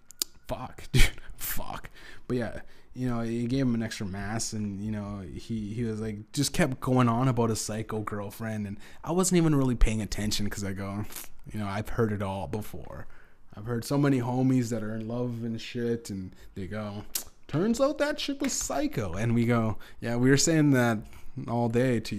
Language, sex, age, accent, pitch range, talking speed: English, male, 20-39, American, 105-125 Hz, 205 wpm